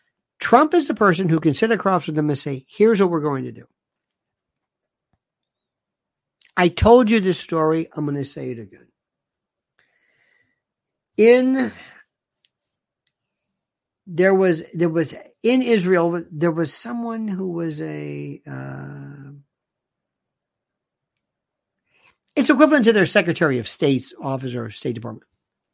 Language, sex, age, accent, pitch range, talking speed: English, male, 60-79, American, 140-215 Hz, 130 wpm